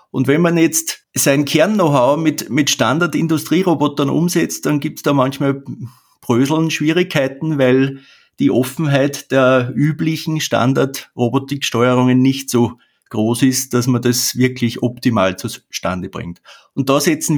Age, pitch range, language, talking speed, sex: 50-69, 125-150 Hz, German, 130 wpm, male